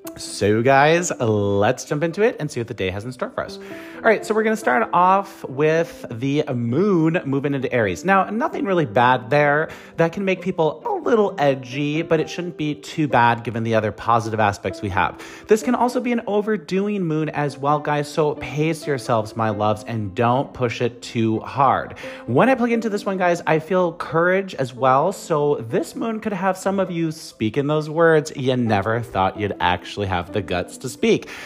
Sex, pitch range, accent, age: male, 120-185 Hz, American, 30-49